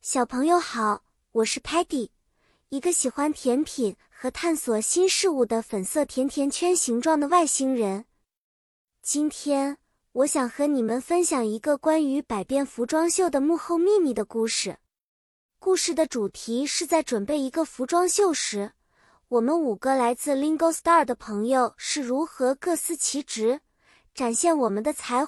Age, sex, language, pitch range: 20-39, male, Chinese, 245-330 Hz